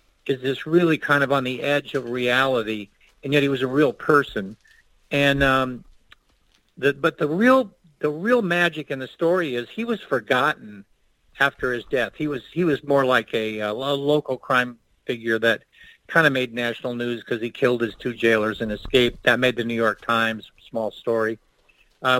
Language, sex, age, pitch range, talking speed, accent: English, male, 50-69, 130-175 Hz, 190 wpm, American